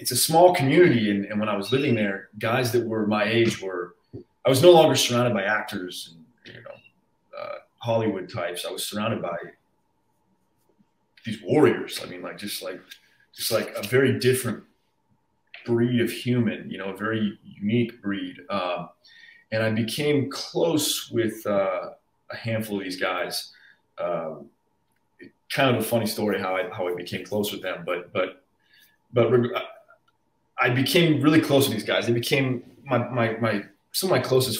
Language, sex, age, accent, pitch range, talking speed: English, male, 30-49, American, 105-130 Hz, 170 wpm